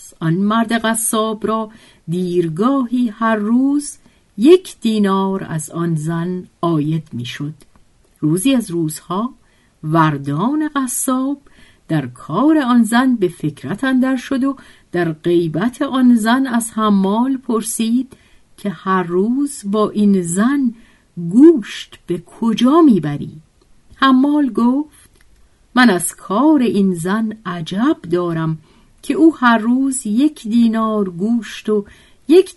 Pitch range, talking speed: 175-245 Hz, 115 wpm